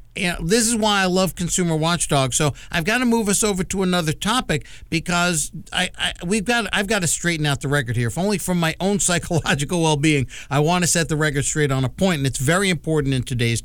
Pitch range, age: 140-180 Hz, 50-69